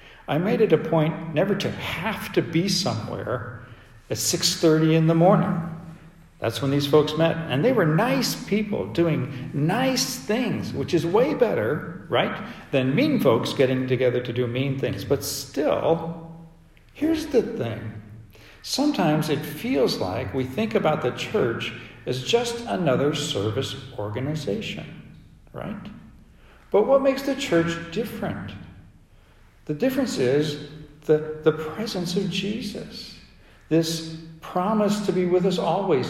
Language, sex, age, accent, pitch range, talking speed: English, male, 60-79, American, 130-190 Hz, 140 wpm